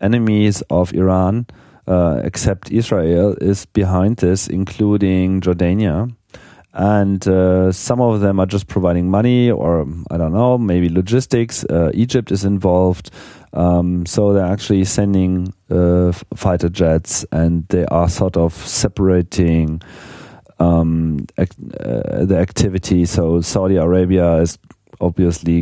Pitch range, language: 80-100 Hz, English